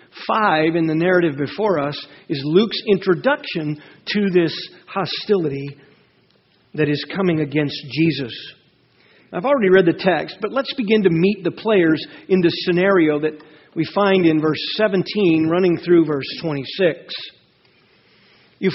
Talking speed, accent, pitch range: 140 wpm, American, 170-210 Hz